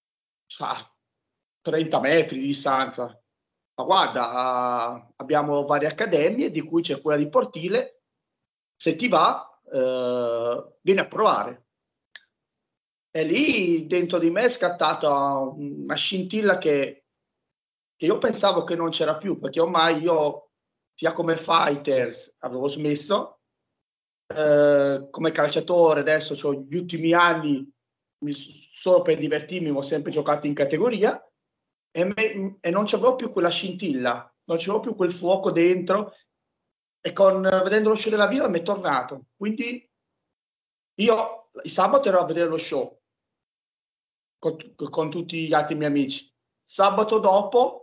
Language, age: Italian, 30-49